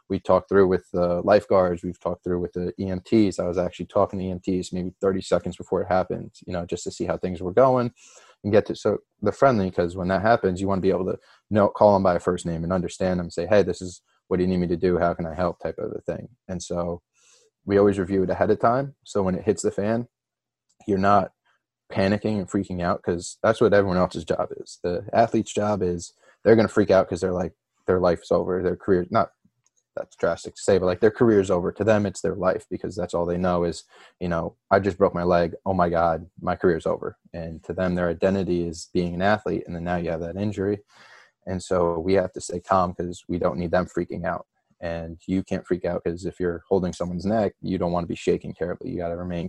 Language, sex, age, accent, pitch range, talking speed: English, male, 20-39, American, 85-100 Hz, 255 wpm